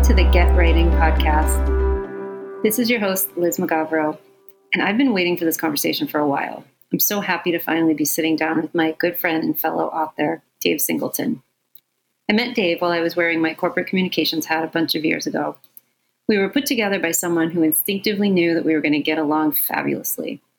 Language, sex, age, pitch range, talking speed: English, female, 30-49, 155-190 Hz, 210 wpm